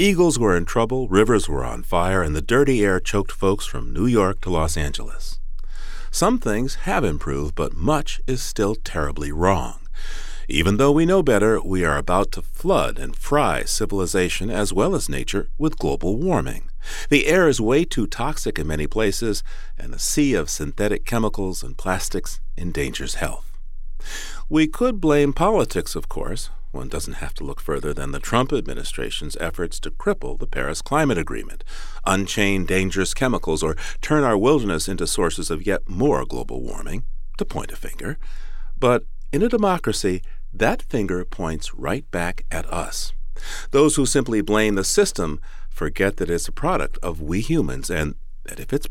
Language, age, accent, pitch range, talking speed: English, 50-69, American, 80-120 Hz, 170 wpm